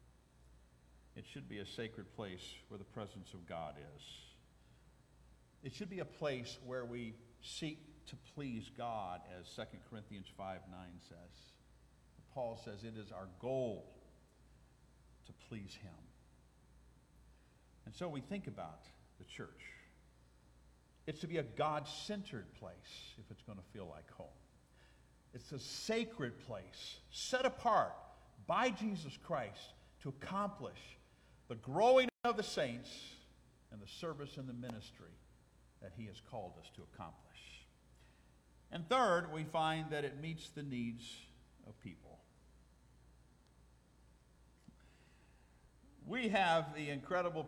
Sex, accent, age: male, American, 50-69